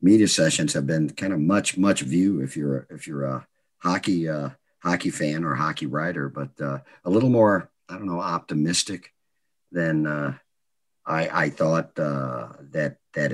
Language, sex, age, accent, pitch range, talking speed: English, male, 50-69, American, 75-85 Hz, 170 wpm